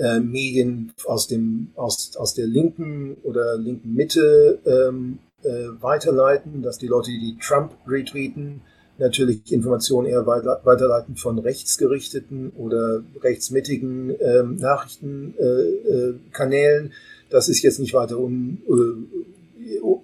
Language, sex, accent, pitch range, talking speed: German, male, German, 115-130 Hz, 115 wpm